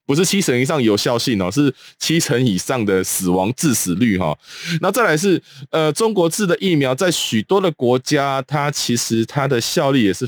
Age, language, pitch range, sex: 20-39, Chinese, 105-145 Hz, male